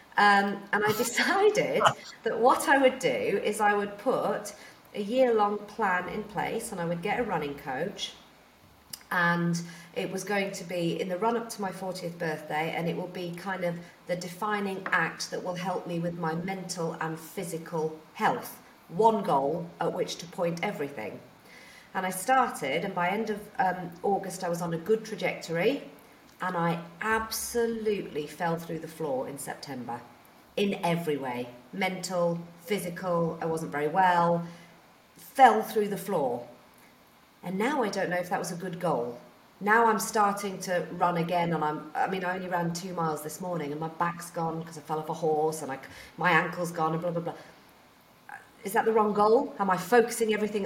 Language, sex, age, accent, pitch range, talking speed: English, female, 40-59, British, 170-210 Hz, 185 wpm